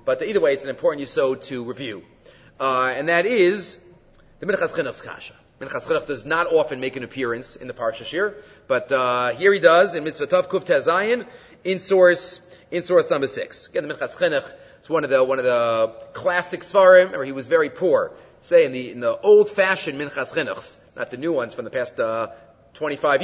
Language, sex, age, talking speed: English, male, 30-49, 195 wpm